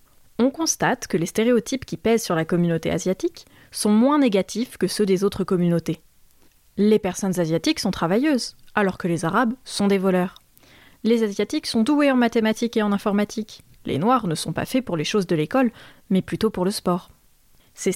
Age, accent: 20-39, French